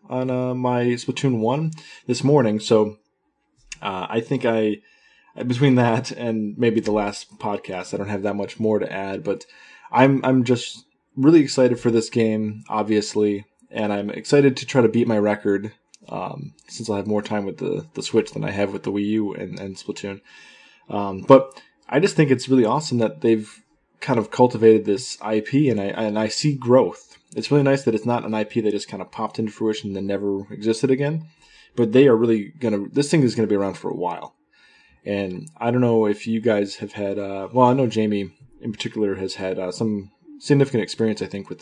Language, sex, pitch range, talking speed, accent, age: English, male, 105-125 Hz, 215 wpm, American, 20-39